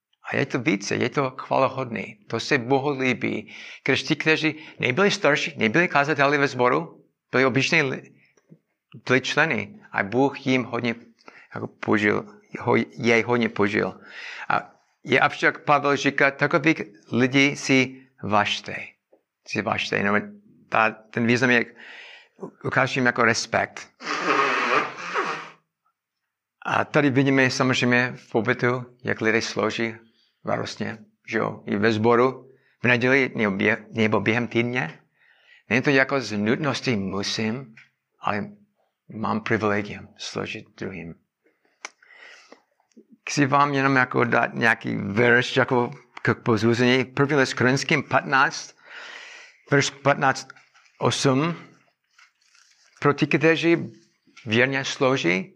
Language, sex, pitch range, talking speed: Czech, male, 115-145 Hz, 105 wpm